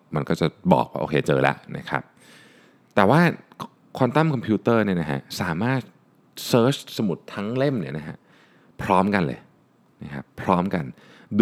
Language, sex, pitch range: Thai, male, 85-115 Hz